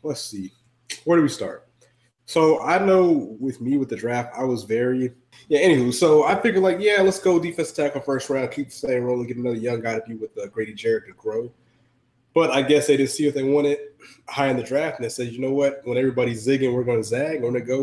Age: 20-39